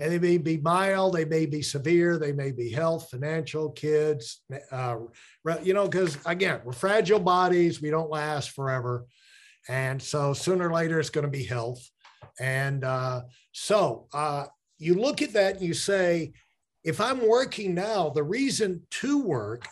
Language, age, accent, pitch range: English, 50-69, American, 150-205 Hz